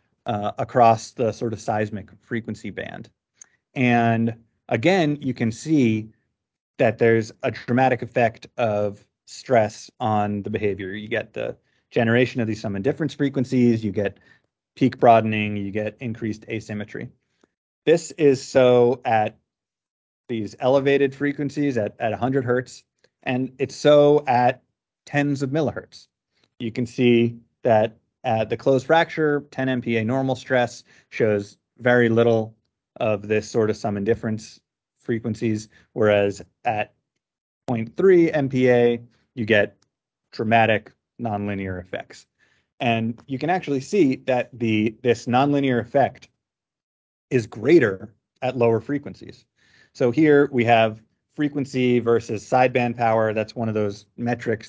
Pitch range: 110-130 Hz